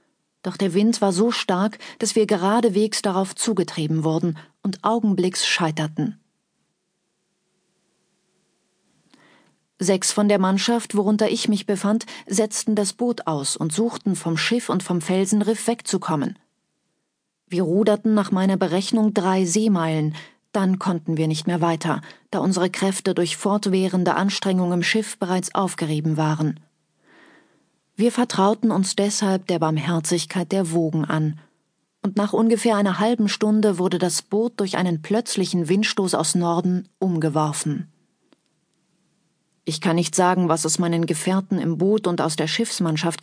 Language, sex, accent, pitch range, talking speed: German, female, German, 170-210 Hz, 135 wpm